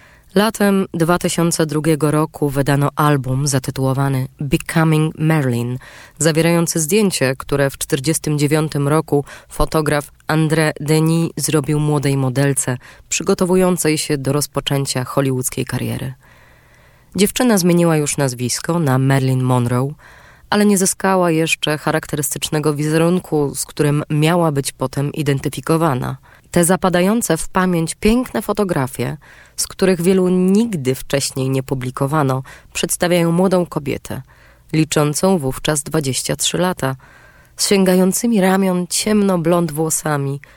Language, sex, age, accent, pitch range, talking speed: Polish, female, 20-39, native, 140-170 Hz, 105 wpm